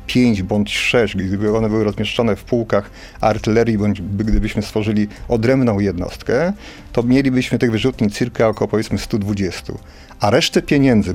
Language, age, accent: Polish, 40-59, native